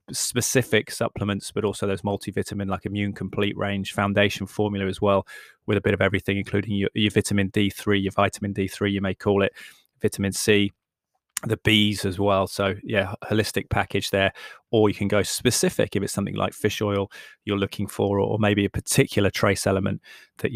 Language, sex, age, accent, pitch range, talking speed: English, male, 20-39, British, 100-110 Hz, 185 wpm